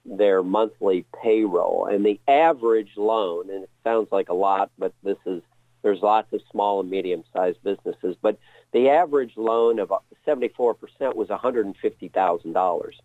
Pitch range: 105-140 Hz